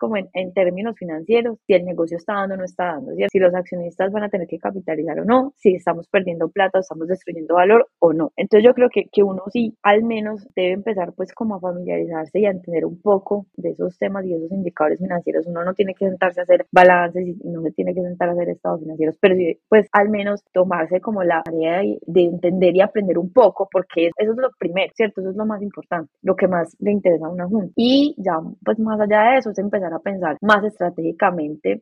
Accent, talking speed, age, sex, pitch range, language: Colombian, 240 wpm, 20-39, female, 170-210 Hz, Spanish